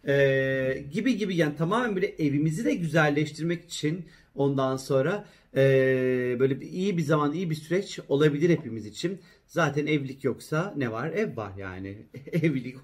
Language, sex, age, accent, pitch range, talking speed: Turkish, male, 40-59, native, 130-175 Hz, 155 wpm